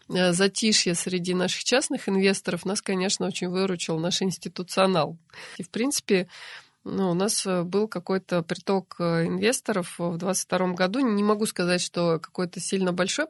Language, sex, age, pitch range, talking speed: Russian, female, 20-39, 175-200 Hz, 135 wpm